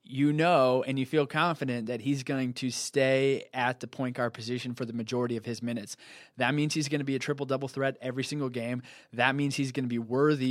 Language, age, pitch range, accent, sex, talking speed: English, 20-39, 120-145 Hz, American, male, 235 wpm